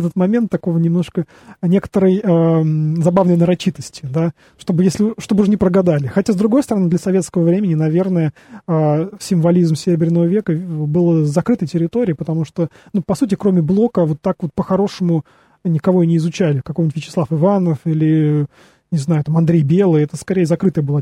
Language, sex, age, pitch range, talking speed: Russian, male, 20-39, 155-190 Hz, 165 wpm